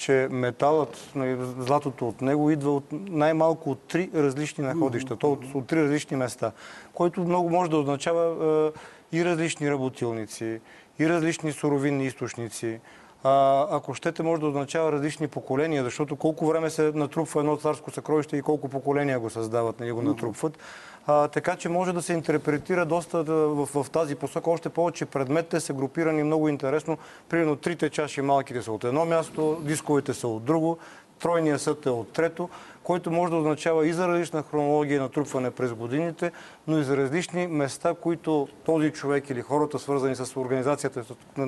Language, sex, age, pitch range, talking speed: Bulgarian, male, 40-59, 135-160 Hz, 170 wpm